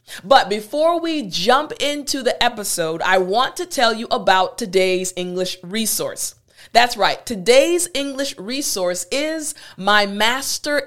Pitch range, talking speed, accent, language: 200-275 Hz, 135 wpm, American, English